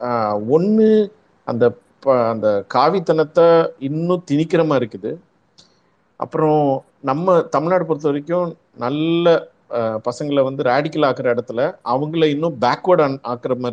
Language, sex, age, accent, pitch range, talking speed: Tamil, male, 50-69, native, 135-165 Hz, 105 wpm